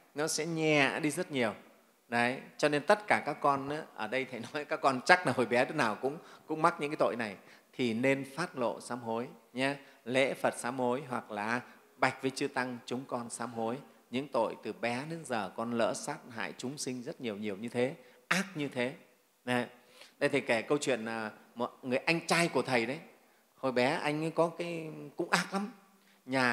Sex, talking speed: male, 220 wpm